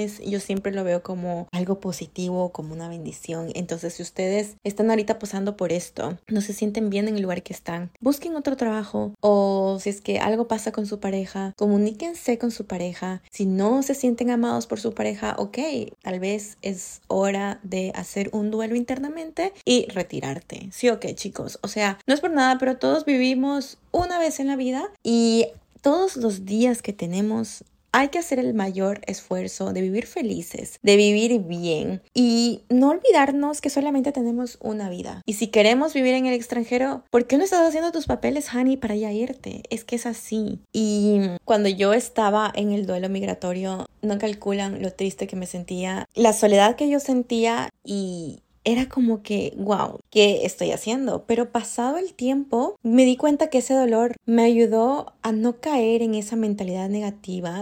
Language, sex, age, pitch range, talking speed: Spanish, female, 20-39, 195-245 Hz, 180 wpm